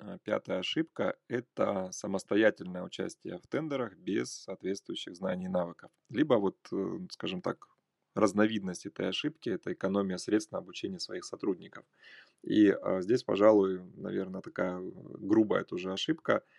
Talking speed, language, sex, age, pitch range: 125 wpm, Russian, male, 20-39, 95-155 Hz